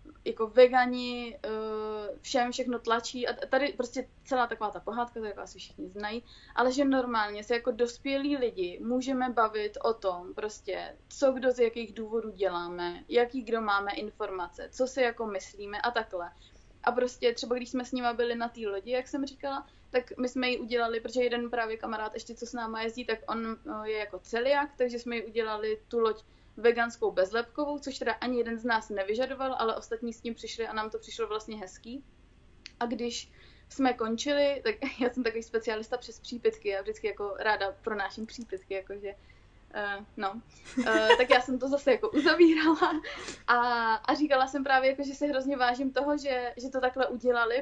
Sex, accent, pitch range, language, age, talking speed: female, native, 215-255 Hz, Czech, 20-39, 185 wpm